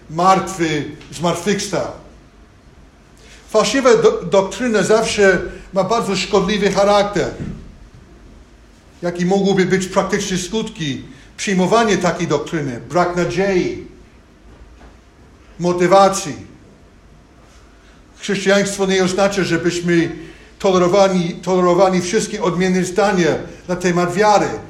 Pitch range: 160-200 Hz